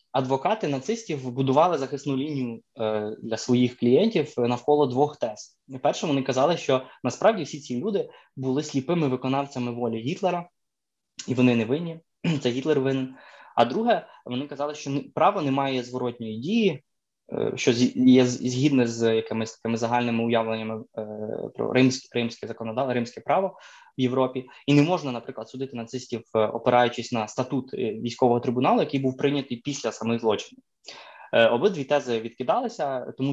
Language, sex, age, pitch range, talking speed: Ukrainian, male, 20-39, 115-140 Hz, 150 wpm